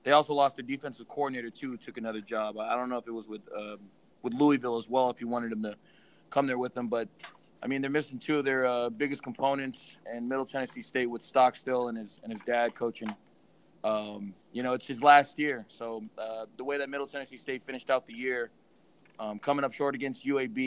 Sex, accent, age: male, American, 20-39